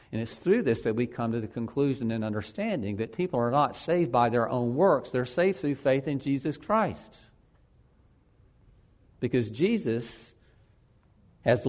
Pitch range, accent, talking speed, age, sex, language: 115-180 Hz, American, 160 wpm, 50-69, male, English